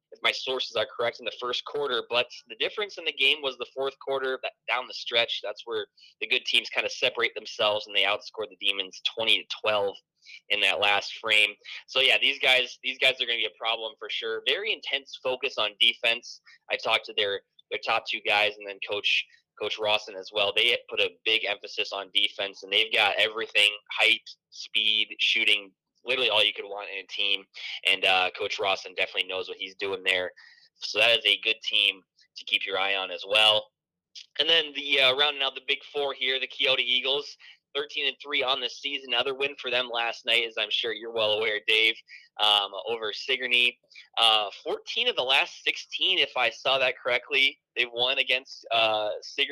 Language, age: English, 20-39